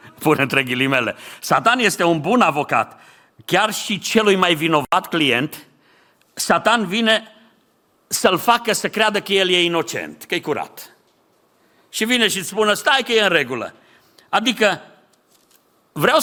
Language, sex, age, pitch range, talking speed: Romanian, male, 50-69, 170-230 Hz, 140 wpm